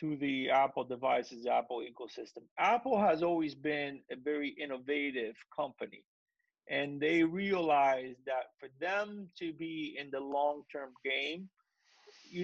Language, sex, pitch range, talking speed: English, male, 140-170 Hz, 130 wpm